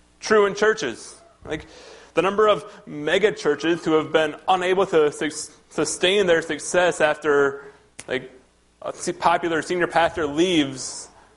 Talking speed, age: 125 wpm, 20-39